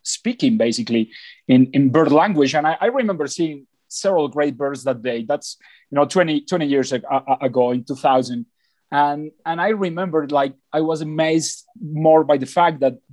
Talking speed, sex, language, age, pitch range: 185 wpm, male, English, 30-49, 130-160 Hz